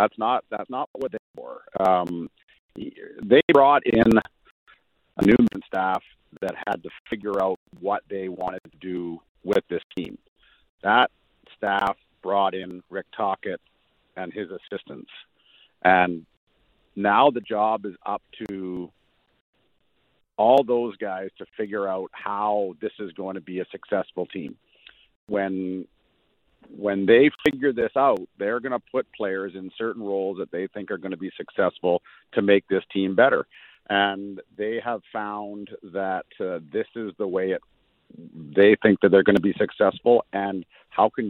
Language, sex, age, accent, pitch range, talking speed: English, male, 50-69, American, 95-105 Hz, 155 wpm